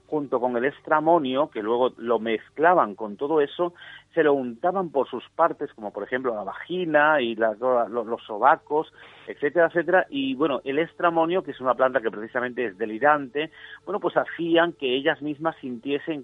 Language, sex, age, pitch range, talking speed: Spanish, male, 40-59, 125-160 Hz, 175 wpm